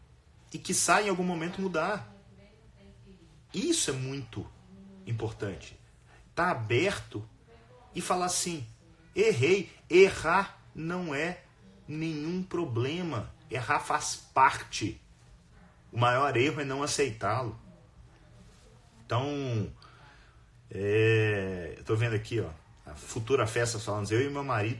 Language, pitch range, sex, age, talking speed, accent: Portuguese, 110-180 Hz, male, 40-59, 115 wpm, Brazilian